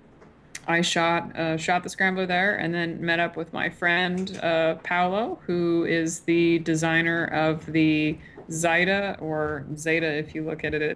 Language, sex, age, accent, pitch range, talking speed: English, female, 20-39, American, 160-175 Hz, 165 wpm